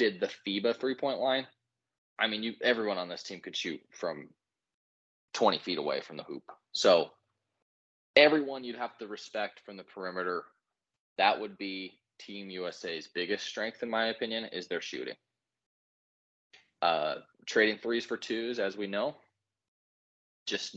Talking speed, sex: 150 wpm, male